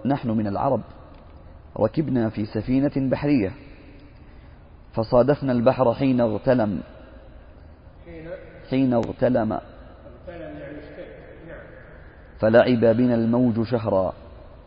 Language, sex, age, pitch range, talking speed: Arabic, male, 40-59, 80-125 Hz, 70 wpm